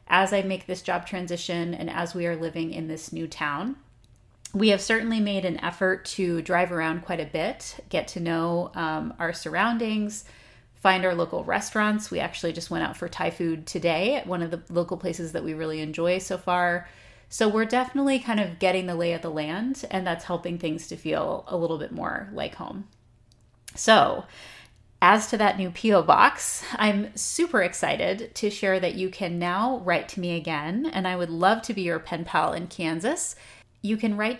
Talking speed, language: 200 wpm, English